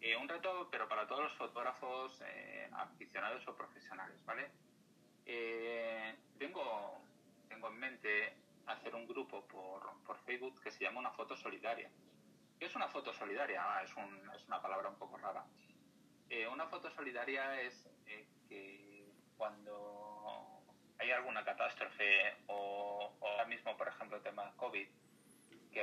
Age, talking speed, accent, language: 30-49, 150 wpm, Spanish, Spanish